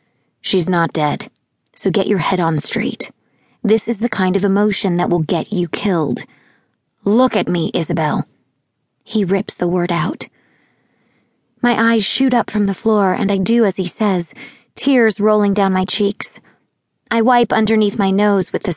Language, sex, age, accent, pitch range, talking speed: English, female, 30-49, American, 185-230 Hz, 175 wpm